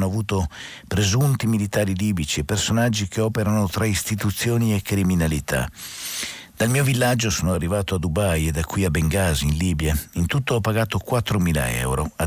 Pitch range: 80-110 Hz